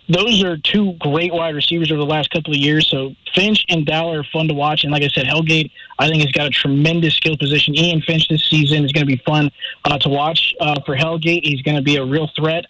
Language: English